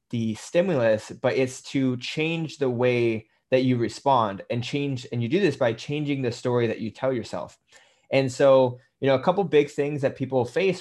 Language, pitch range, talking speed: English, 115-140 Hz, 205 wpm